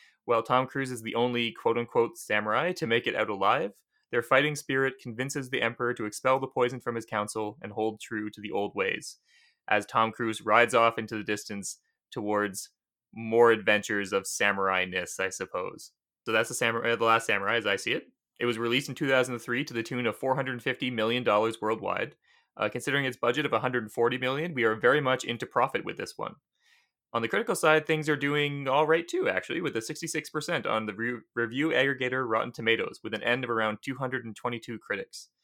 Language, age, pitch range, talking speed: English, 20-39, 110-130 Hz, 195 wpm